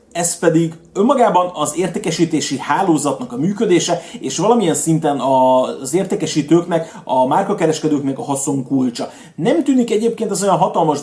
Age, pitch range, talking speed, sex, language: 30-49, 150-180 Hz, 130 wpm, male, Hungarian